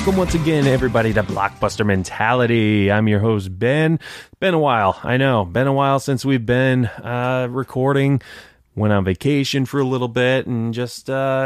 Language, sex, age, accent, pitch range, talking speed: English, male, 20-39, American, 95-125 Hz, 180 wpm